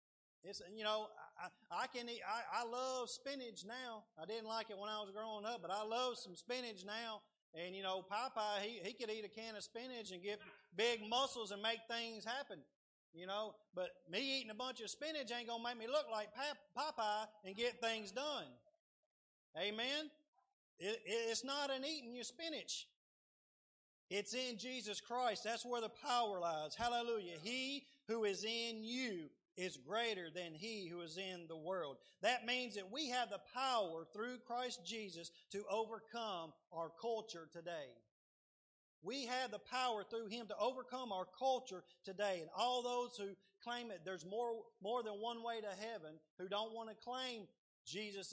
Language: English